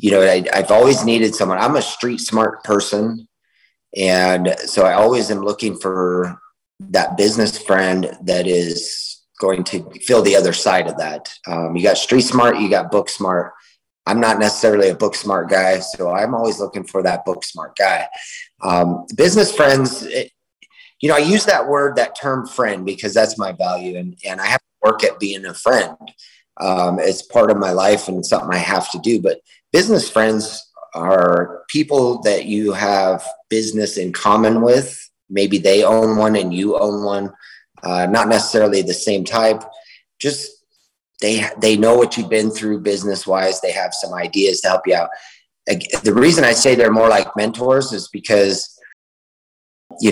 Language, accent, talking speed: English, American, 175 wpm